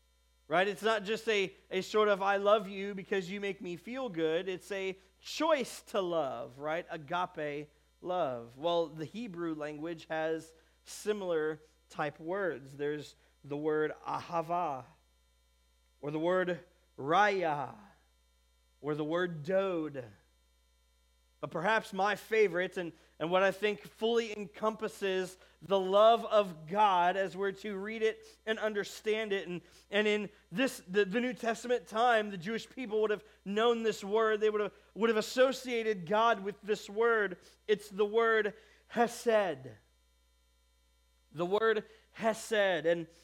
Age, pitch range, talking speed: 40-59, 160-215 Hz, 145 wpm